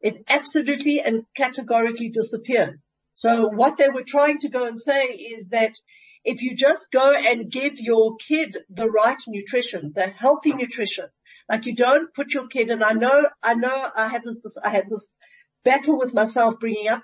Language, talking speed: English, 185 wpm